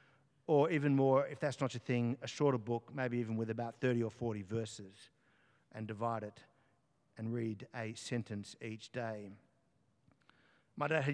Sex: male